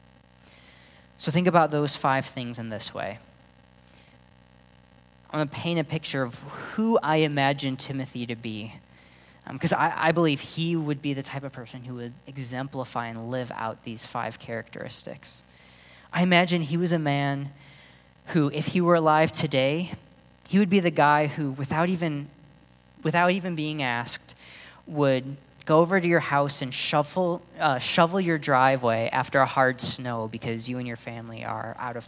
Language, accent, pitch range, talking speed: English, American, 110-155 Hz, 170 wpm